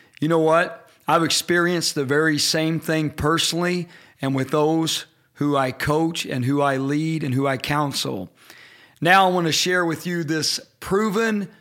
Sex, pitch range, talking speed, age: male, 160-205 Hz, 170 wpm, 40-59